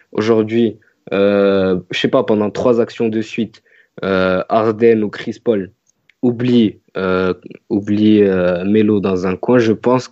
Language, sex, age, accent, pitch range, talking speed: French, male, 20-39, French, 100-115 Hz, 150 wpm